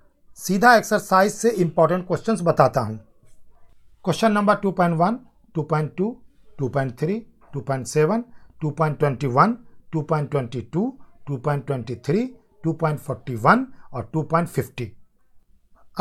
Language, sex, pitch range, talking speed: Hindi, male, 145-210 Hz, 70 wpm